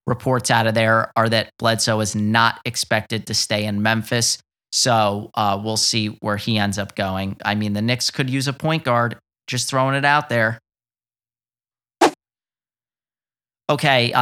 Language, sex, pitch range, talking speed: English, male, 110-125 Hz, 160 wpm